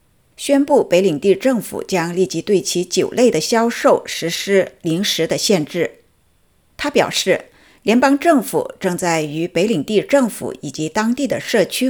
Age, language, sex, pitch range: 50-69, Chinese, female, 165-230 Hz